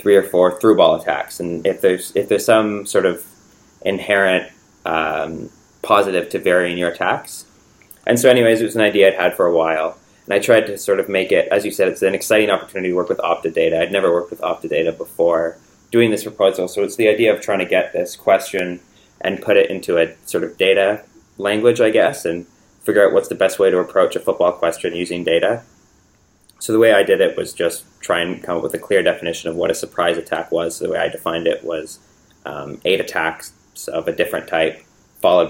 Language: English